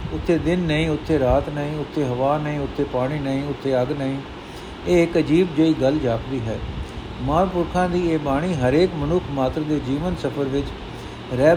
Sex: male